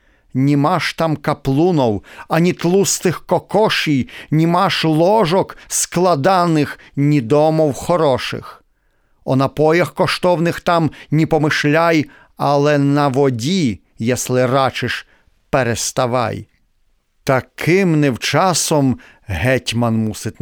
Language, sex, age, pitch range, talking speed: Ukrainian, male, 50-69, 120-165 Hz, 80 wpm